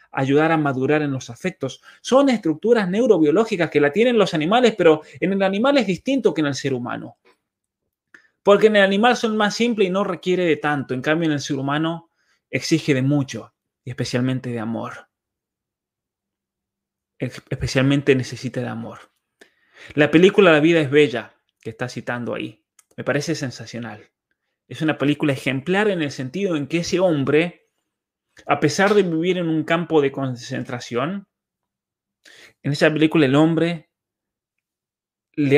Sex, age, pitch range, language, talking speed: male, 20-39, 135-175 Hz, Spanish, 155 wpm